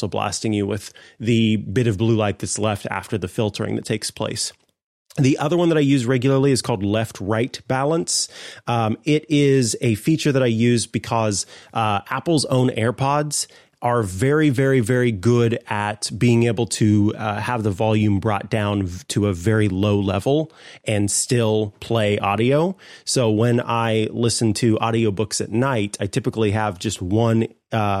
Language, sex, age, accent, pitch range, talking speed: English, male, 30-49, American, 105-125 Hz, 165 wpm